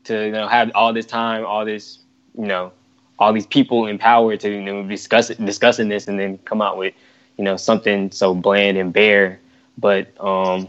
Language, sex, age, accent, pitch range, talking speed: English, male, 10-29, American, 95-115 Hz, 210 wpm